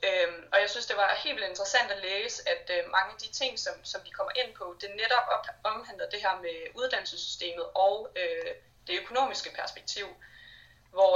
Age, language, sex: 20-39, Danish, female